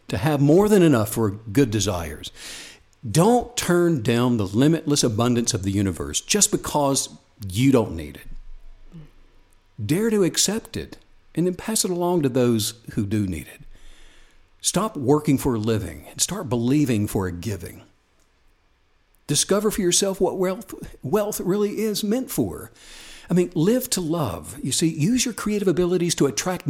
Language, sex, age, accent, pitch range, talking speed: English, male, 60-79, American, 110-175 Hz, 160 wpm